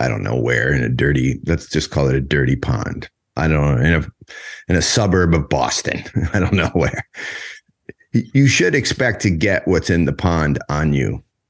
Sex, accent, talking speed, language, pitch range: male, American, 205 wpm, English, 80-105 Hz